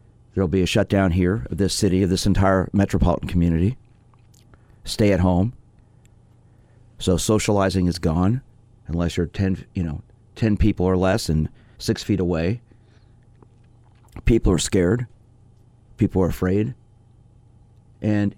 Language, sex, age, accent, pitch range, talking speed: English, male, 40-59, American, 90-115 Hz, 130 wpm